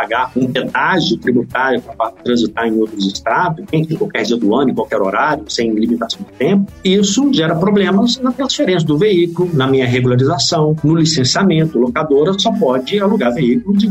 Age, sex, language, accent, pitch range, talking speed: 50-69, male, Portuguese, Brazilian, 130-200 Hz, 170 wpm